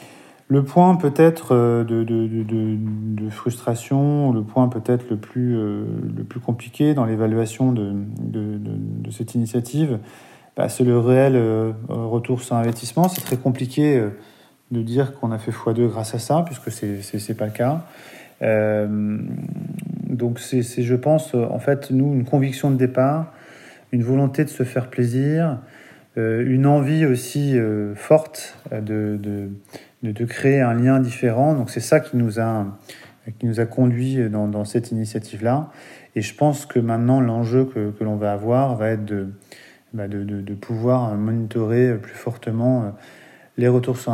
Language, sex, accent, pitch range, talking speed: French, male, French, 110-130 Hz, 160 wpm